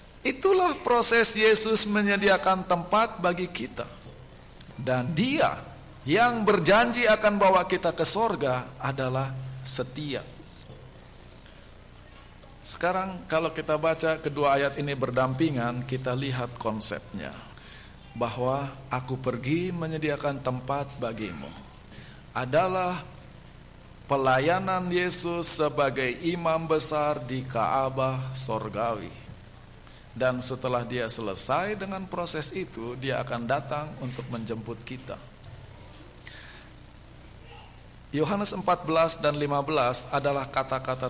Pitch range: 125-170 Hz